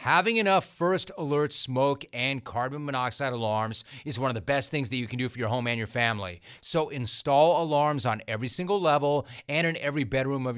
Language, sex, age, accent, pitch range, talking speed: English, male, 30-49, American, 125-145 Hz, 210 wpm